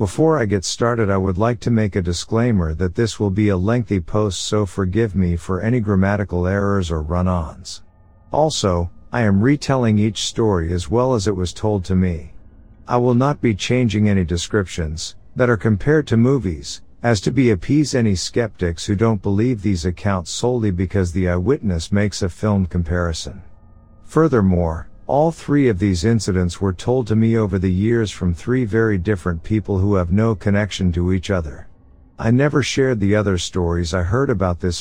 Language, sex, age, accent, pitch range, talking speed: English, male, 50-69, American, 90-115 Hz, 185 wpm